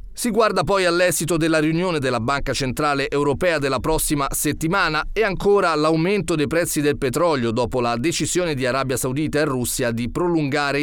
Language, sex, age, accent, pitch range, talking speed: Italian, male, 30-49, native, 125-165 Hz, 165 wpm